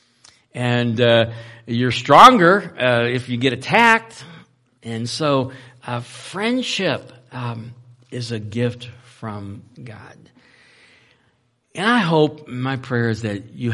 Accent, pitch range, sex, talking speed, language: American, 110-150 Hz, male, 120 wpm, English